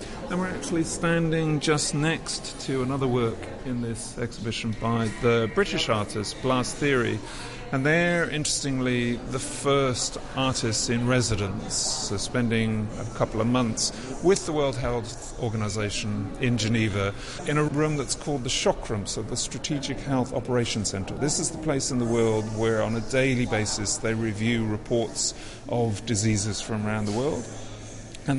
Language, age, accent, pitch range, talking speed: English, 50-69, British, 110-130 Hz, 155 wpm